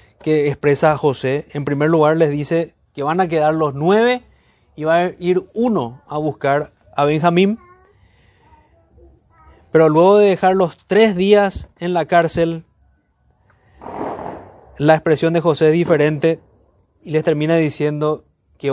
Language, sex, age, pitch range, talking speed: Spanish, male, 30-49, 140-175 Hz, 140 wpm